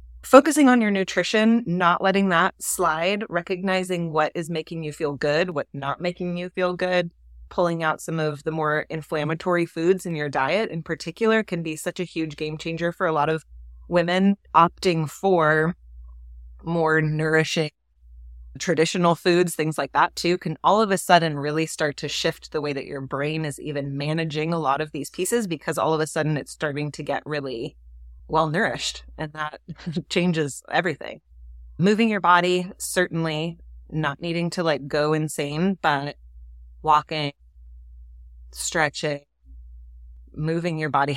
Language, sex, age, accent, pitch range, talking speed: English, female, 20-39, American, 145-175 Hz, 160 wpm